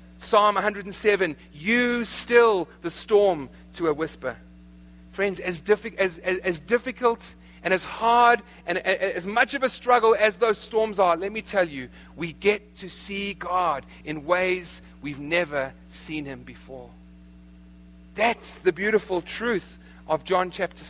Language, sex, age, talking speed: English, male, 40-59, 145 wpm